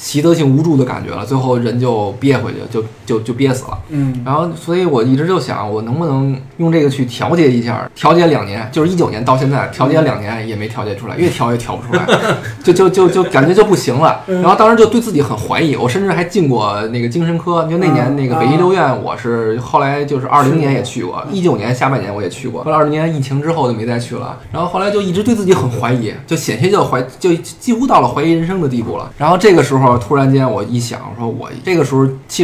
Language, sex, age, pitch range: Chinese, male, 20-39, 120-160 Hz